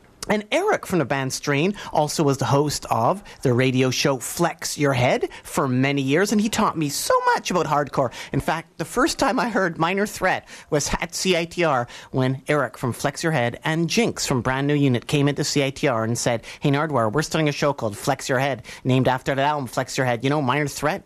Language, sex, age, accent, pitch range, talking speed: English, male, 40-59, American, 140-210 Hz, 220 wpm